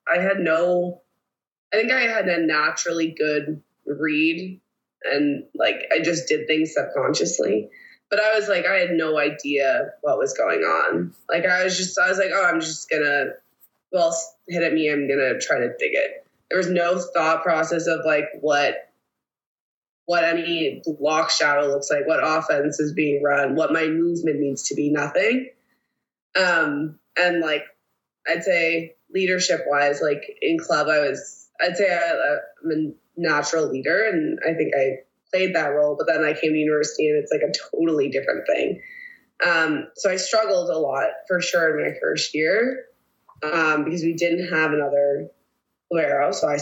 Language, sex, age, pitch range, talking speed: English, female, 20-39, 150-215 Hz, 180 wpm